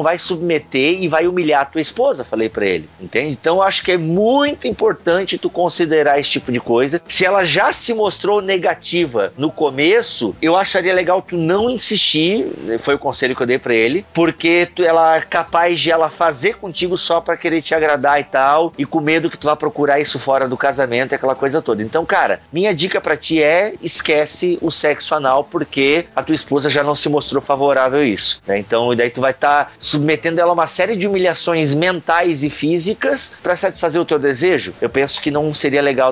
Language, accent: Portuguese, Brazilian